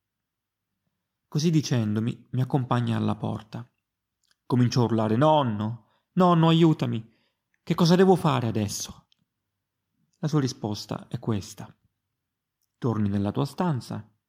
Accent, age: native, 30-49